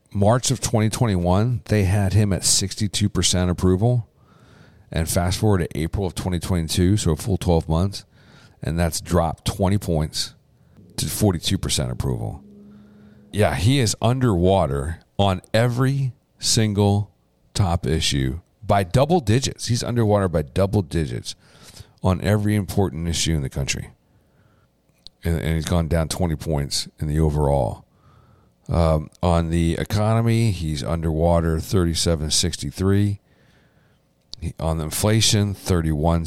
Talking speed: 125 wpm